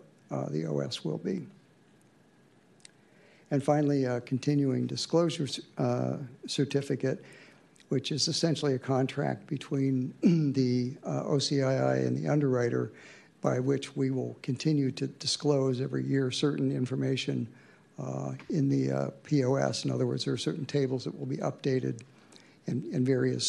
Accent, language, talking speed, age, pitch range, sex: American, English, 140 wpm, 60-79, 120-140 Hz, male